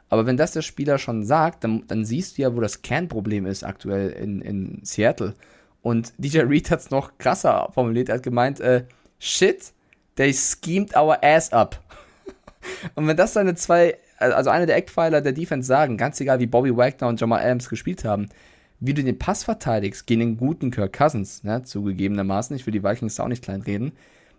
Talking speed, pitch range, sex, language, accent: 195 wpm, 115-150 Hz, male, German, German